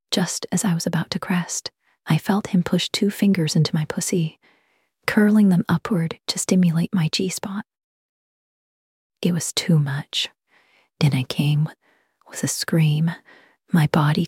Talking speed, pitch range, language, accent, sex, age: 145 wpm, 160-185 Hz, English, American, female, 30-49